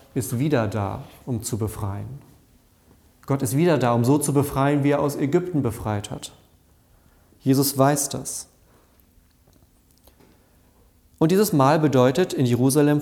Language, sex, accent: German, male, German